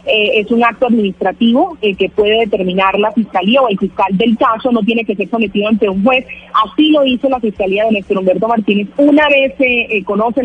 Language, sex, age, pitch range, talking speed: Spanish, female, 30-49, 205-245 Hz, 220 wpm